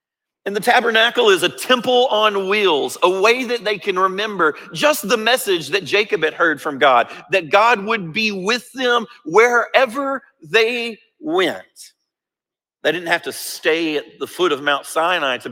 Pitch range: 155-240 Hz